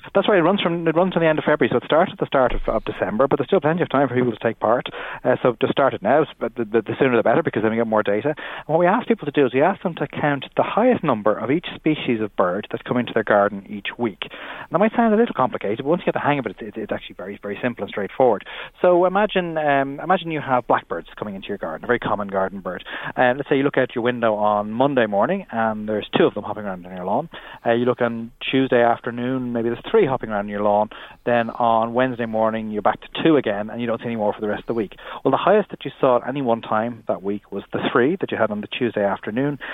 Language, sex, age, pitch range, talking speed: English, male, 30-49, 110-145 Hz, 295 wpm